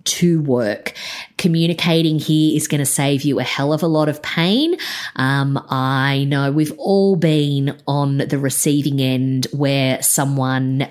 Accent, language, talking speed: Australian, English, 155 wpm